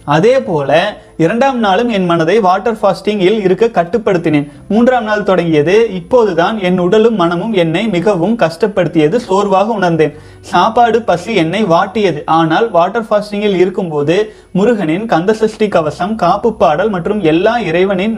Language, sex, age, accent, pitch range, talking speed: Tamil, male, 30-49, native, 170-225 Hz, 130 wpm